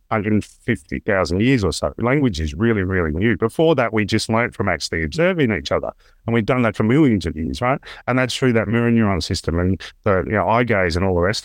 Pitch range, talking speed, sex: 110-140 Hz, 250 wpm, male